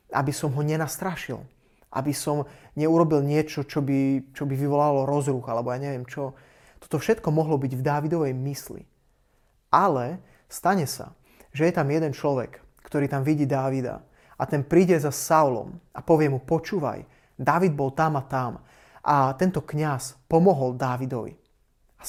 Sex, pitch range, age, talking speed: male, 135-160 Hz, 30-49, 155 wpm